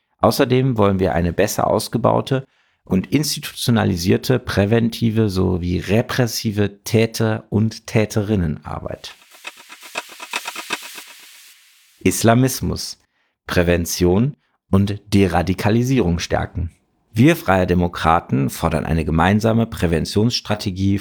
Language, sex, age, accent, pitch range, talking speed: German, male, 50-69, German, 90-115 Hz, 75 wpm